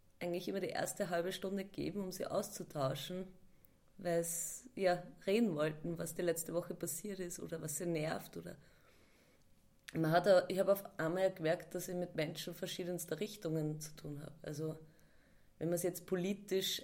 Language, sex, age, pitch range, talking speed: German, female, 20-39, 160-190 Hz, 160 wpm